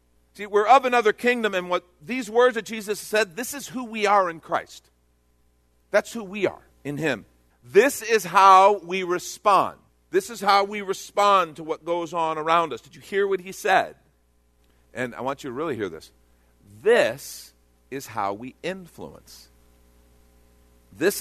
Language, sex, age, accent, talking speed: English, male, 50-69, American, 175 wpm